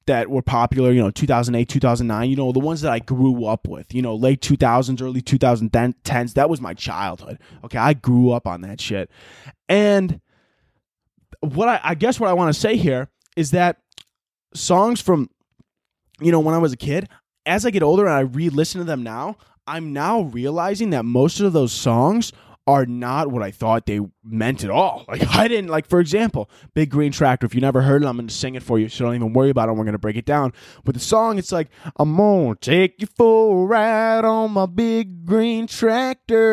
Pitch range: 125-195 Hz